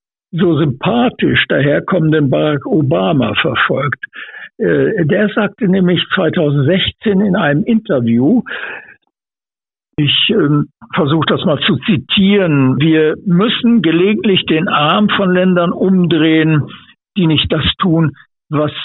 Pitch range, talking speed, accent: 145-190 Hz, 100 wpm, German